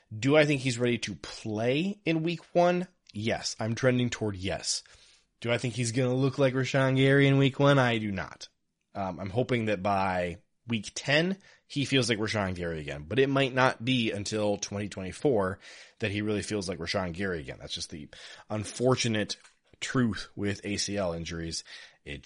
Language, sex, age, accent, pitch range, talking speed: English, male, 20-39, American, 100-125 Hz, 185 wpm